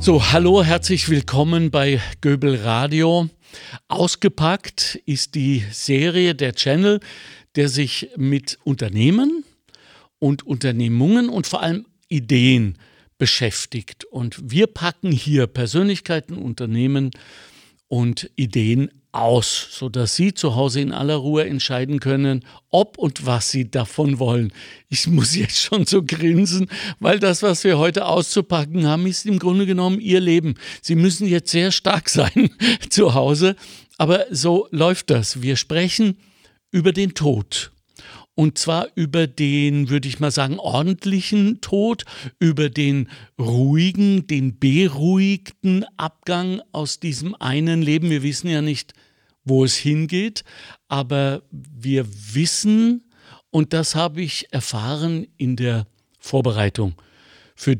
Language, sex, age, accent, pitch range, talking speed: German, male, 60-79, German, 135-180 Hz, 130 wpm